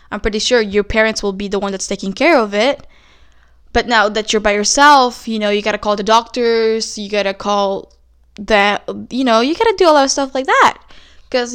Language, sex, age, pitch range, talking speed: English, female, 10-29, 200-245 Hz, 240 wpm